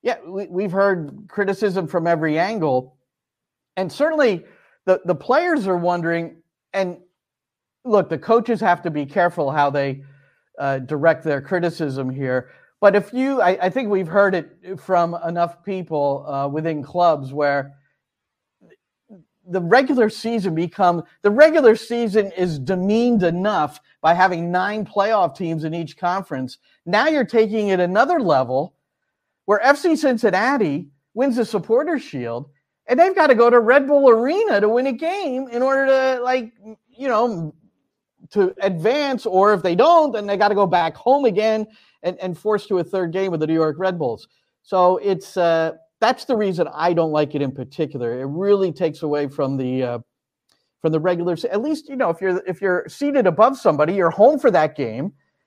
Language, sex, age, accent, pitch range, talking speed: English, male, 50-69, American, 160-225 Hz, 175 wpm